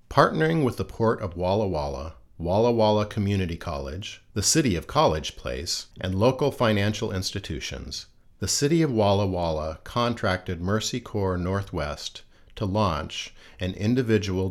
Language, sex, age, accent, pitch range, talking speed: English, male, 50-69, American, 95-110 Hz, 135 wpm